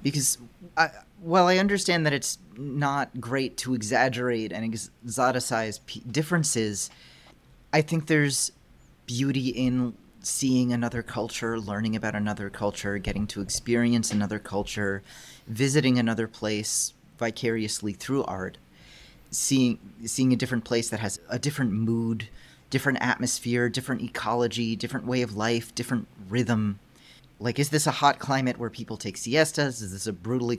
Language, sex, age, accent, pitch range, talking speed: English, male, 30-49, American, 110-130 Hz, 135 wpm